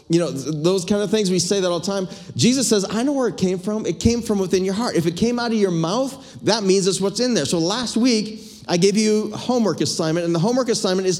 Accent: American